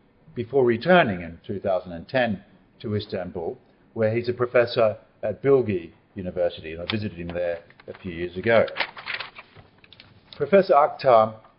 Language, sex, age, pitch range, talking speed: English, male, 50-69, 100-120 Hz, 125 wpm